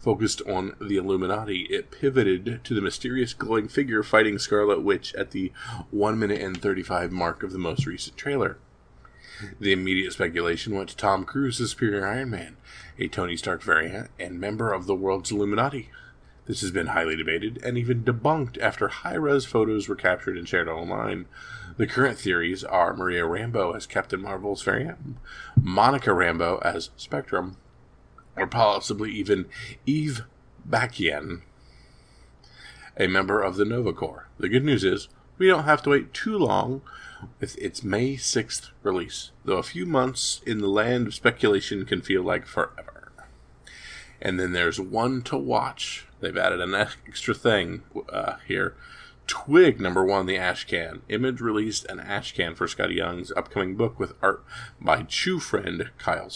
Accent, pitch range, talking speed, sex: American, 95-130 Hz, 160 wpm, male